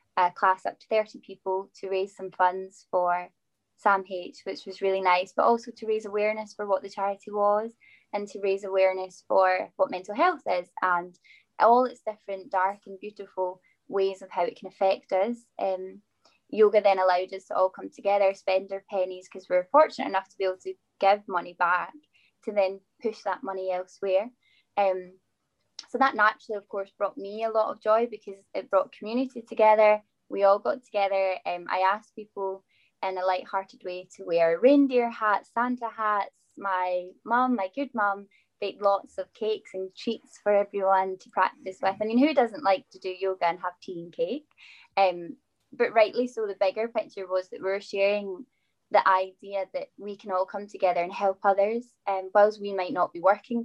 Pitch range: 190-220 Hz